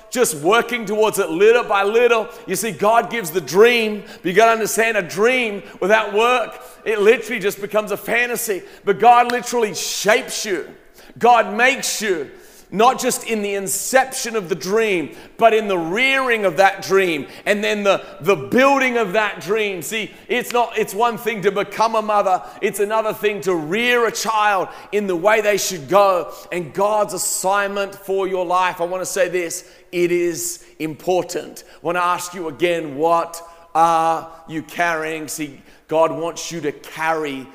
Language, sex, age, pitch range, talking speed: English, male, 30-49, 160-215 Hz, 175 wpm